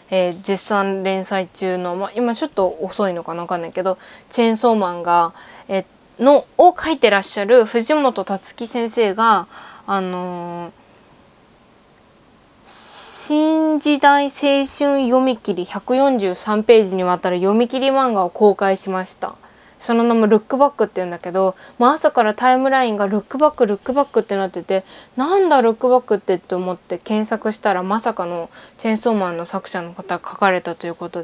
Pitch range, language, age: 190-250 Hz, Japanese, 20-39